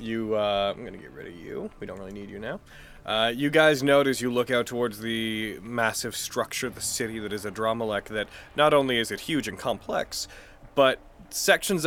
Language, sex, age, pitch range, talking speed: English, male, 20-39, 100-130 Hz, 210 wpm